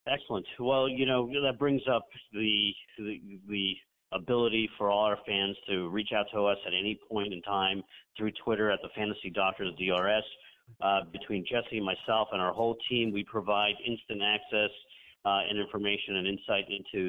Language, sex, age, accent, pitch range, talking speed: English, male, 50-69, American, 95-110 Hz, 180 wpm